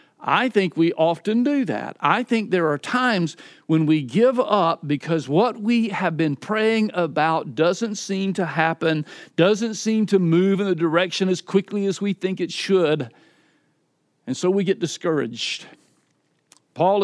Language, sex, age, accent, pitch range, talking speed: English, male, 50-69, American, 145-195 Hz, 160 wpm